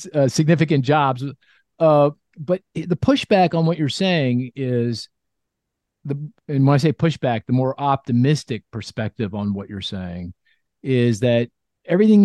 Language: English